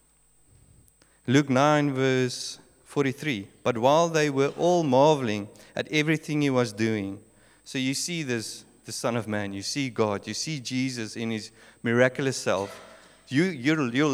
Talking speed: 155 wpm